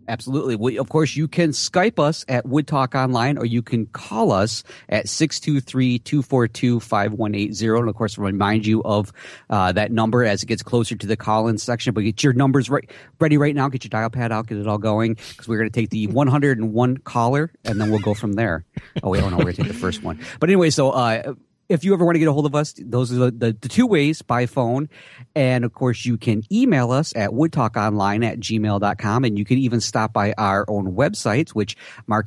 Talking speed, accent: 220 wpm, American